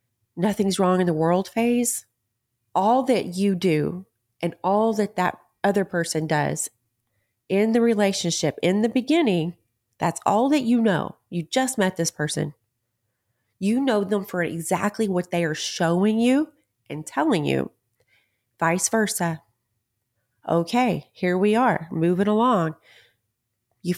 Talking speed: 140 wpm